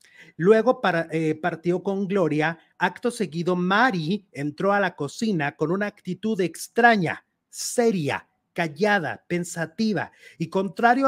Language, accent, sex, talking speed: Portuguese, Mexican, male, 115 wpm